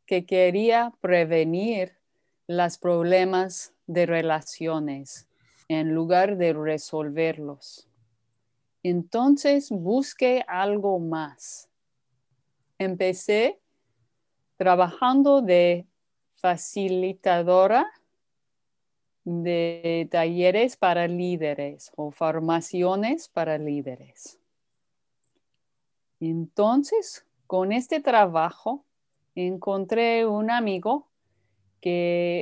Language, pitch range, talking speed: Spanish, 160-190 Hz, 65 wpm